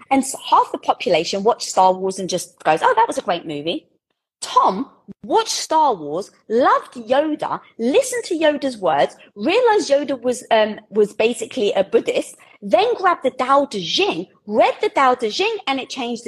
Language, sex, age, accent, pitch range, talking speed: English, female, 30-49, British, 190-280 Hz, 175 wpm